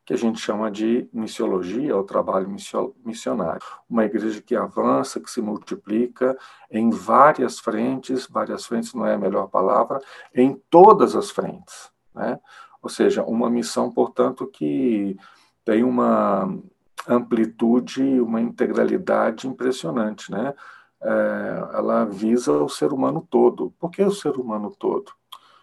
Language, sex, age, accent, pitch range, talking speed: Portuguese, male, 50-69, Brazilian, 110-165 Hz, 130 wpm